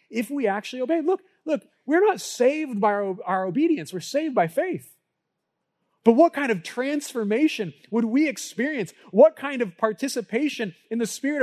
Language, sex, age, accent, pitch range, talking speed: English, male, 30-49, American, 160-240 Hz, 170 wpm